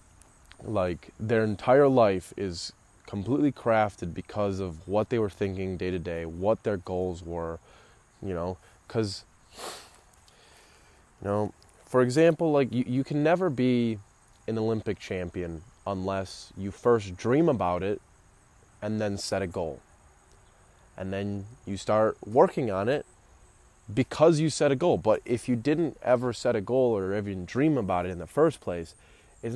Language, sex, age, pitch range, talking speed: English, male, 20-39, 95-120 Hz, 155 wpm